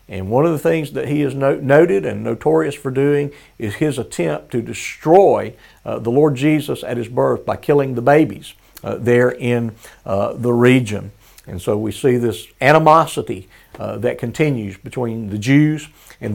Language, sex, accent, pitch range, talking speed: English, male, American, 110-150 Hz, 175 wpm